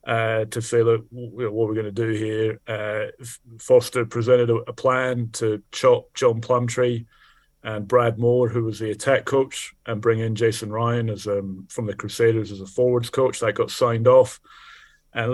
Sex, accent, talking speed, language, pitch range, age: male, British, 185 wpm, English, 115-130 Hz, 30-49